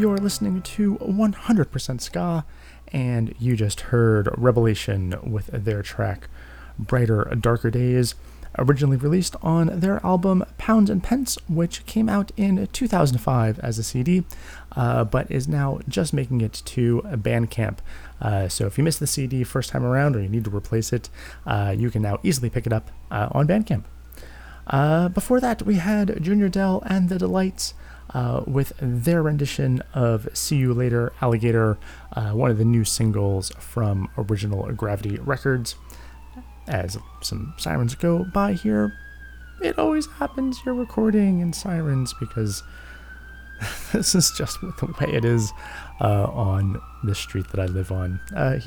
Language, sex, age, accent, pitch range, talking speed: English, male, 30-49, American, 100-165 Hz, 155 wpm